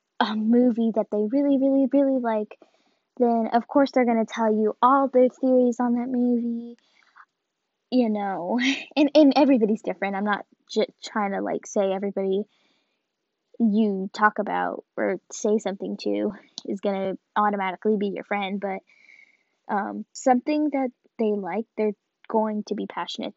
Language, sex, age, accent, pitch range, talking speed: English, female, 10-29, American, 205-265 Hz, 150 wpm